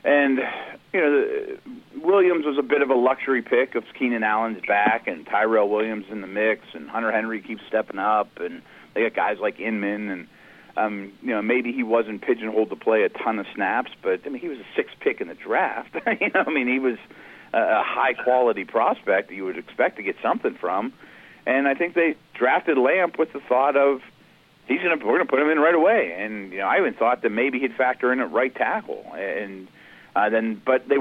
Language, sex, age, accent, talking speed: English, male, 40-59, American, 220 wpm